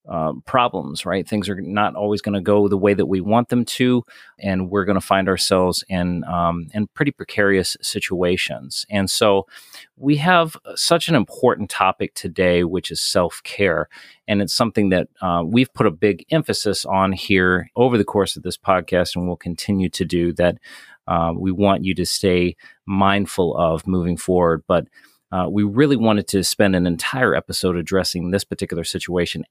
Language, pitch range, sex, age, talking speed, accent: English, 90-130 Hz, male, 40-59, 180 wpm, American